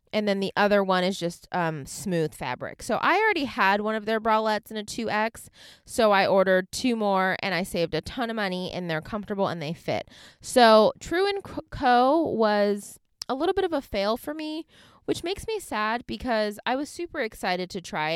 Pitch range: 170-220 Hz